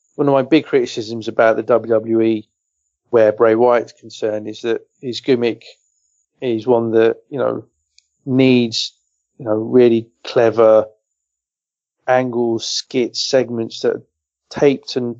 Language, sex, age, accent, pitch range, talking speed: English, male, 40-59, British, 110-125 Hz, 125 wpm